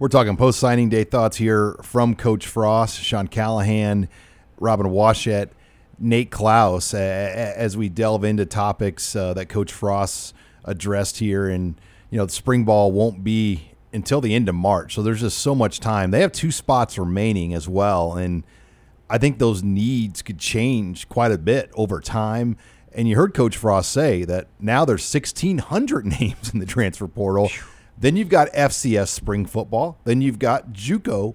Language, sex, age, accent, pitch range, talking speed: English, male, 40-59, American, 95-115 Hz, 175 wpm